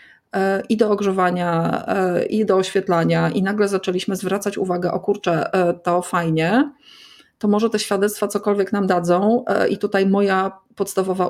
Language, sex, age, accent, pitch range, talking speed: Polish, female, 30-49, native, 185-210 Hz, 140 wpm